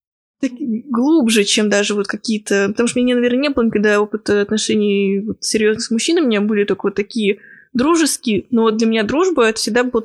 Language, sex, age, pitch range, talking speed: Russian, female, 20-39, 210-250 Hz, 205 wpm